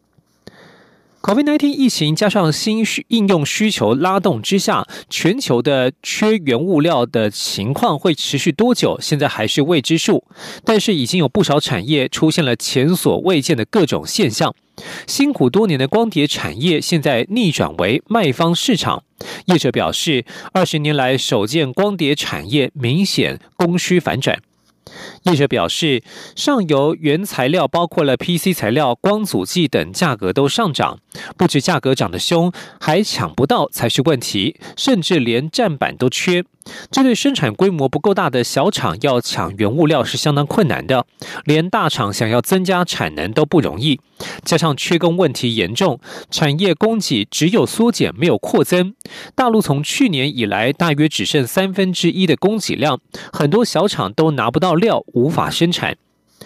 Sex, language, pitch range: male, French, 140-195 Hz